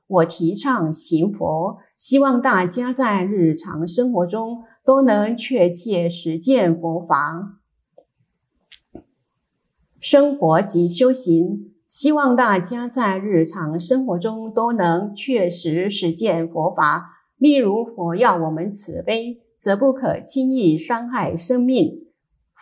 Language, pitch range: Chinese, 170-255 Hz